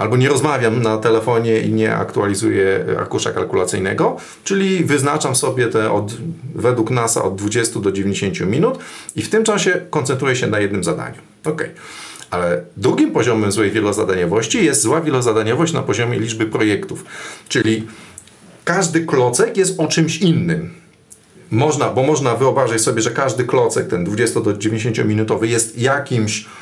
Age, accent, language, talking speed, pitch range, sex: 40-59, native, Polish, 145 wpm, 110-165 Hz, male